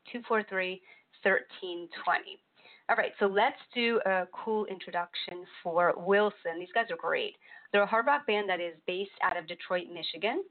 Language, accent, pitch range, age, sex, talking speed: English, American, 175-225 Hz, 40-59, female, 165 wpm